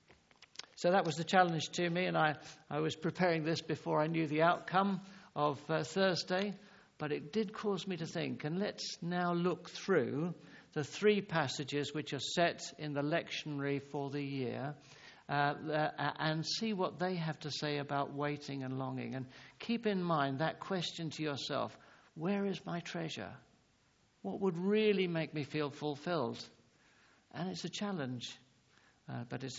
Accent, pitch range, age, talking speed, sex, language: British, 140-175 Hz, 60-79, 170 wpm, male, English